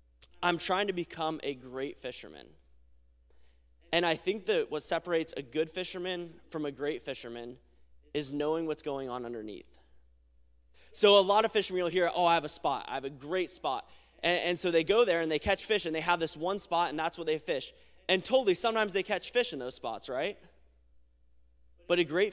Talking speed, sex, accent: 205 wpm, male, American